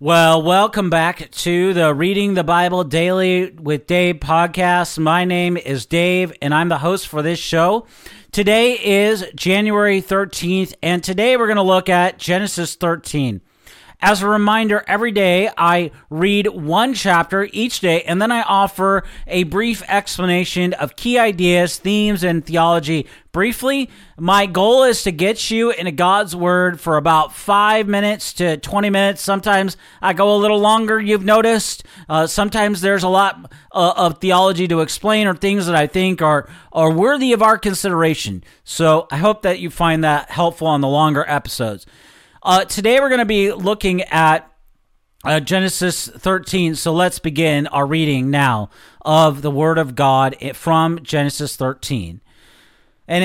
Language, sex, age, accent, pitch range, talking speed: English, male, 40-59, American, 160-200 Hz, 160 wpm